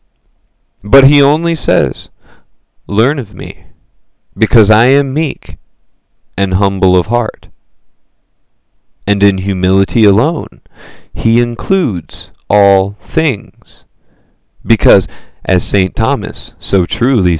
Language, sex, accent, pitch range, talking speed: English, male, American, 85-110 Hz, 100 wpm